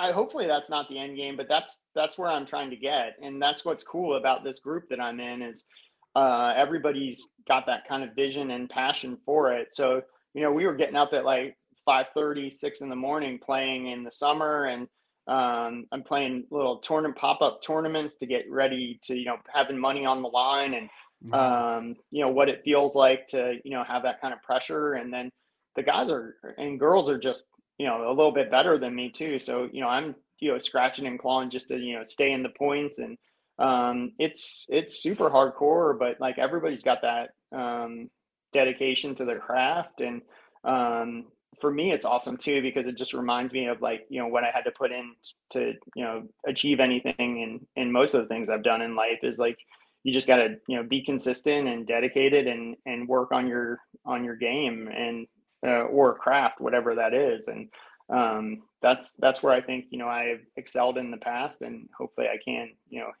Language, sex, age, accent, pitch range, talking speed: English, male, 30-49, American, 120-140 Hz, 210 wpm